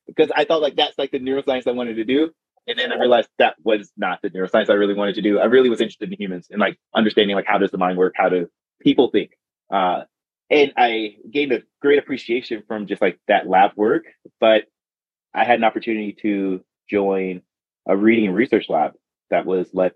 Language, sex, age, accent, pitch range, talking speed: English, male, 20-39, American, 95-115 Hz, 215 wpm